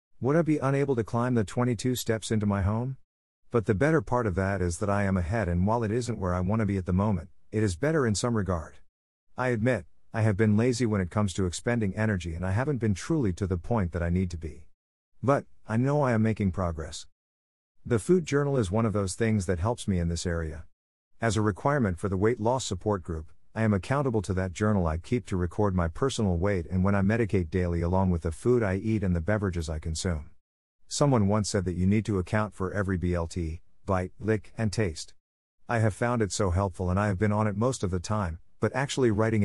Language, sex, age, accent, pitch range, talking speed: English, male, 50-69, American, 85-115 Hz, 240 wpm